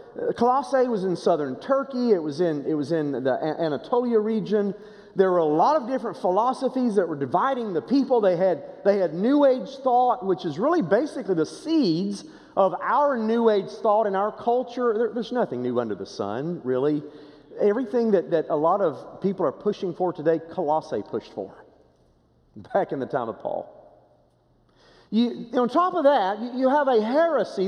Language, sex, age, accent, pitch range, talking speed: English, male, 40-59, American, 185-280 Hz, 185 wpm